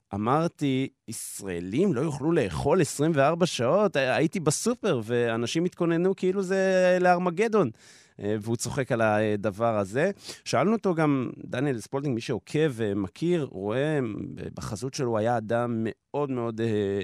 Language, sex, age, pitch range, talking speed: Hebrew, male, 30-49, 105-145 Hz, 120 wpm